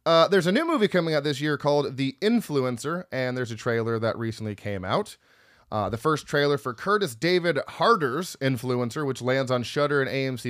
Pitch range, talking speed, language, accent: 125-165 Hz, 200 wpm, English, American